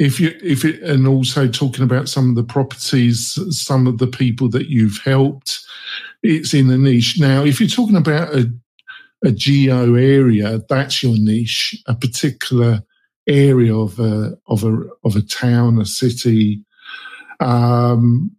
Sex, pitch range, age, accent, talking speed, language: male, 115-140 Hz, 50-69, British, 155 wpm, English